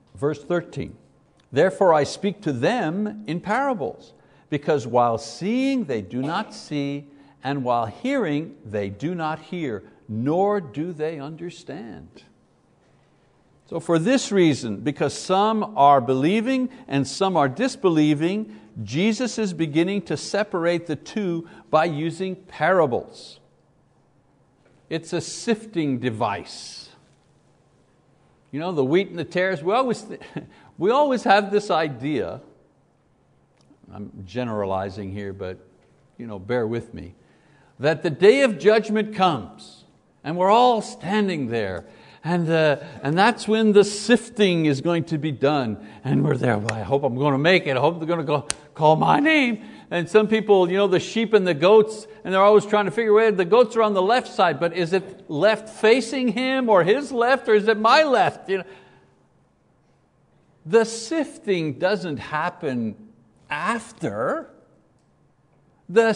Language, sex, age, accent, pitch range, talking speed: English, male, 60-79, American, 140-215 Hz, 145 wpm